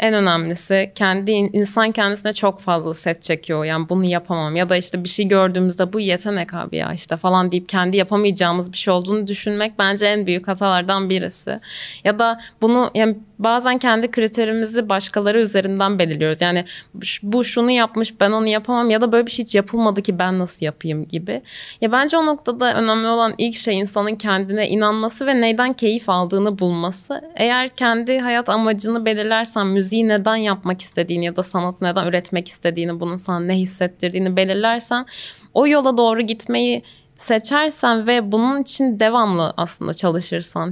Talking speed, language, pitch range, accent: 165 wpm, Turkish, 185-230 Hz, native